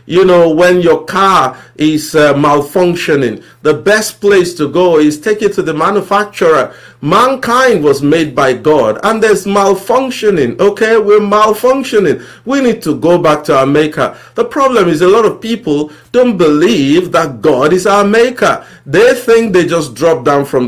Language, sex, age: English, male, 50-69